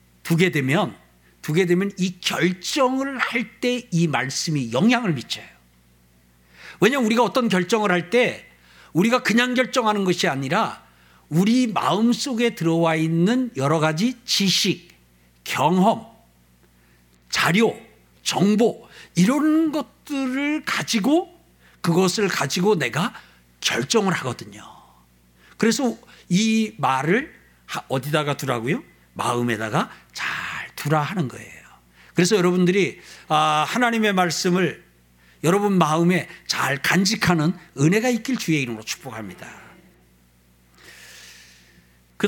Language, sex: Korean, male